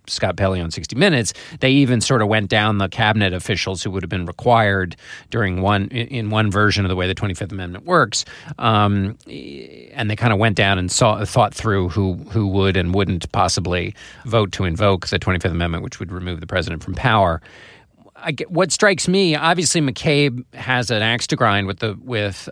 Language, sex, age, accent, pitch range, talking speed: English, male, 40-59, American, 95-120 Hz, 200 wpm